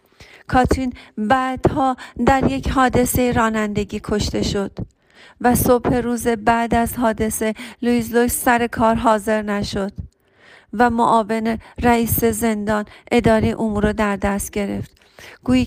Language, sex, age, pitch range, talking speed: Persian, female, 40-59, 210-245 Hz, 120 wpm